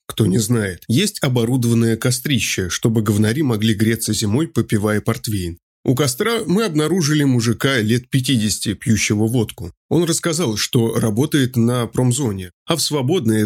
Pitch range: 110-135 Hz